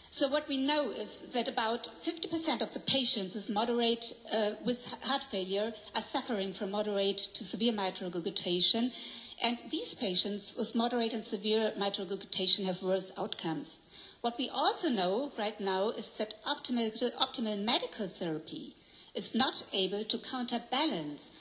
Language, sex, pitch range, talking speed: English, female, 195-255 Hz, 150 wpm